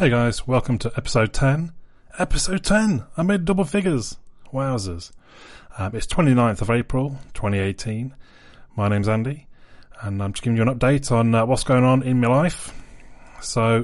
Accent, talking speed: British, 165 wpm